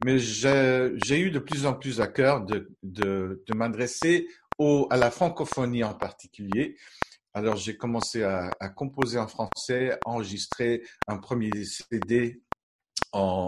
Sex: male